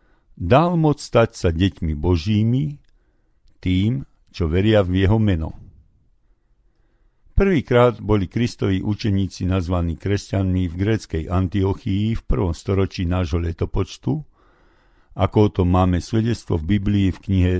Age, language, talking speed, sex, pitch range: 50-69, Slovak, 115 wpm, male, 90-115 Hz